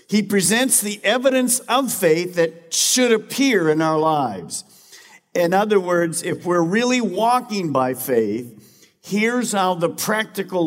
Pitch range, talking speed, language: 155-215 Hz, 140 wpm, English